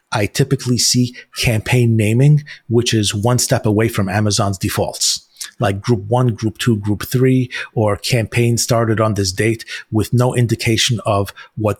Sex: male